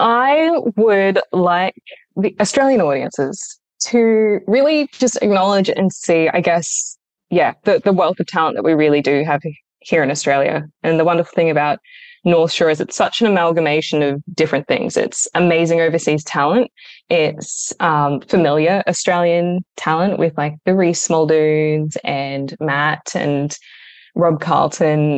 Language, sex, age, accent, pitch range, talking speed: English, female, 10-29, Australian, 150-185 Hz, 150 wpm